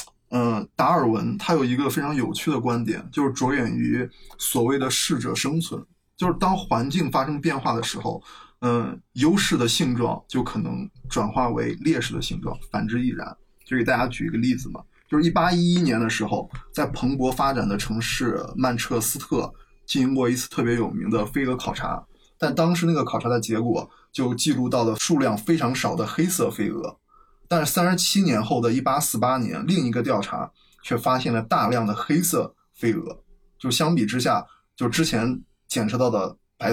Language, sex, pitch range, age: Chinese, male, 115-155 Hz, 20-39